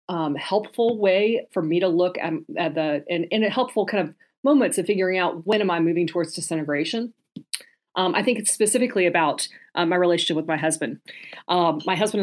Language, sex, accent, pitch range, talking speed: English, female, American, 165-215 Hz, 200 wpm